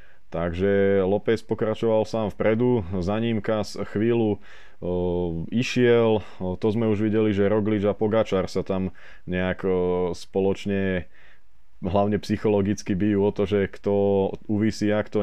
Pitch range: 95-105 Hz